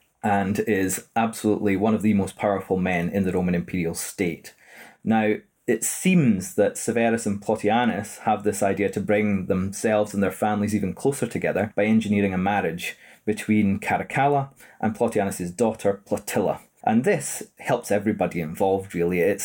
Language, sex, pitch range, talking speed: English, male, 100-120 Hz, 155 wpm